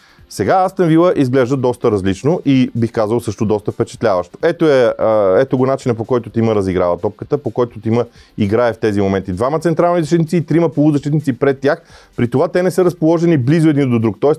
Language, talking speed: Bulgarian, 205 wpm